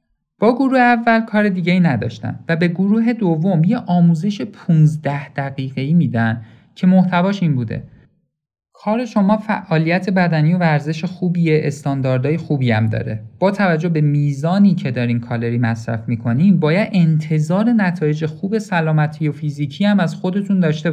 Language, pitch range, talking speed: Persian, 135-185 Hz, 145 wpm